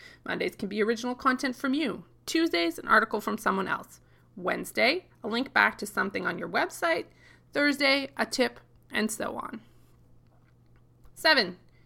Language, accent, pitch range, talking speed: English, American, 200-275 Hz, 145 wpm